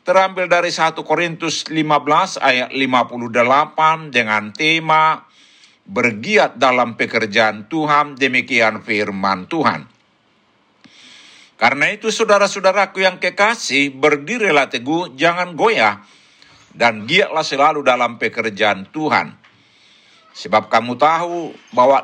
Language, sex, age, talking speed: Indonesian, male, 60-79, 95 wpm